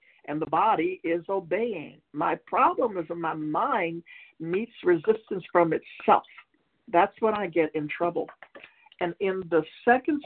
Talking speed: 145 wpm